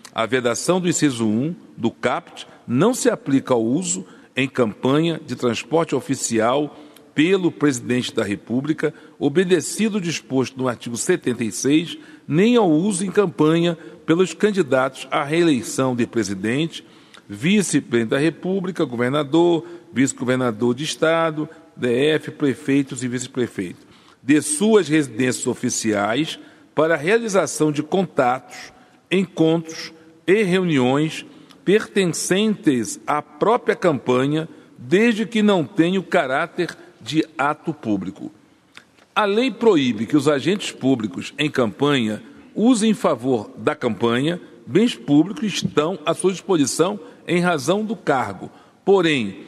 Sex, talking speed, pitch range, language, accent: male, 120 wpm, 130-180 Hz, Portuguese, Brazilian